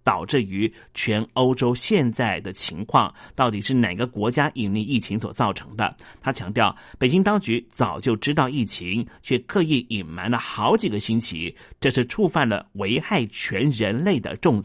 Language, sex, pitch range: Chinese, male, 105-130 Hz